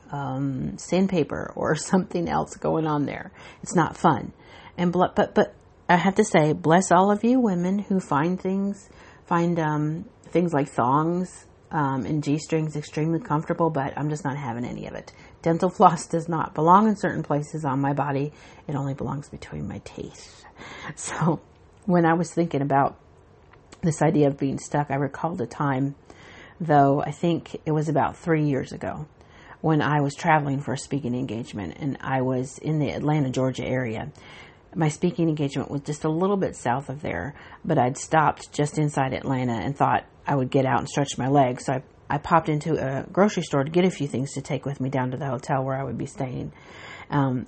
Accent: American